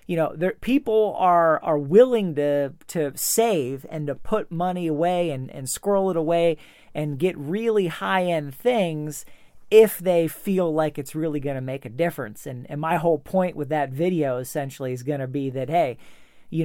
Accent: American